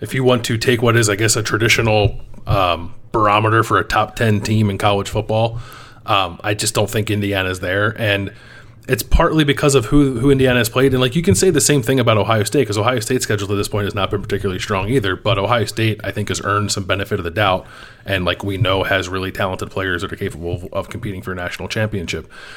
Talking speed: 245 wpm